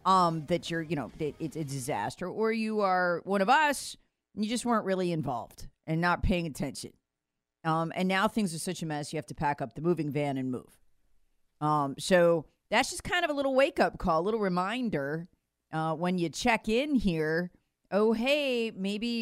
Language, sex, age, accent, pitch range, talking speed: English, female, 40-59, American, 145-200 Hz, 205 wpm